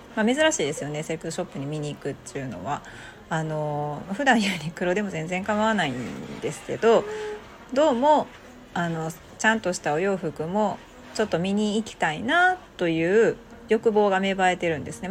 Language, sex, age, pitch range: Japanese, female, 40-59, 165-260 Hz